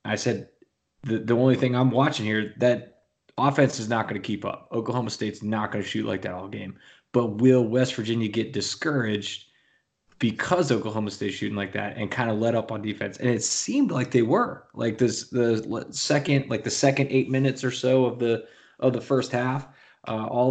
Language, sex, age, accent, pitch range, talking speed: English, male, 20-39, American, 110-130 Hz, 210 wpm